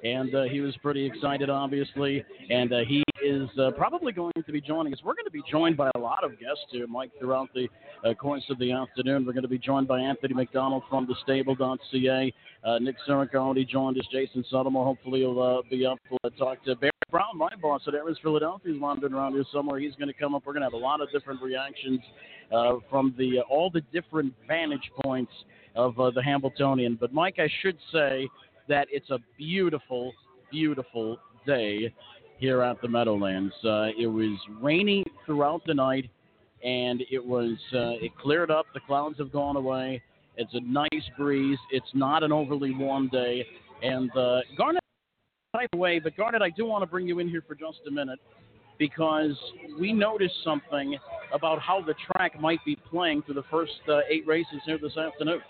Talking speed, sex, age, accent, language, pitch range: 200 wpm, male, 50-69, American, English, 130-150 Hz